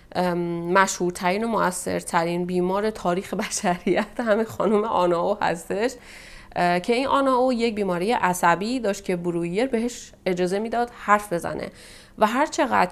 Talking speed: 145 wpm